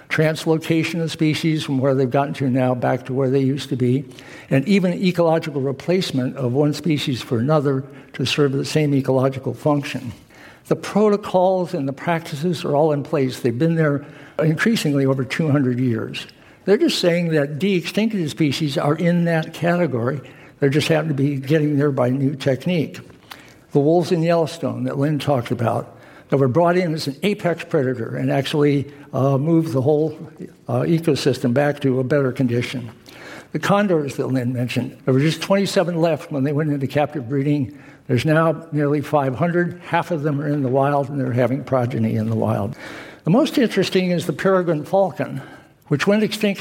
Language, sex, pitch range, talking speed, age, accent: English, male, 135-165 Hz, 180 wpm, 60-79, American